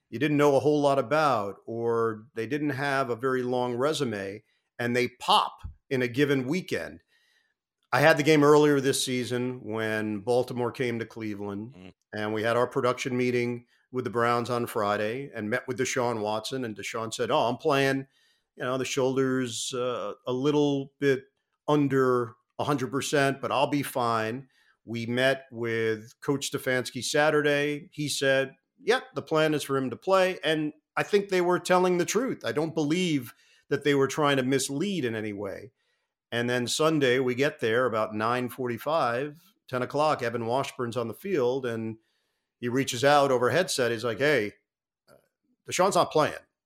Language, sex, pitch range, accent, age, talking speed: English, male, 120-145 Hz, American, 50-69, 175 wpm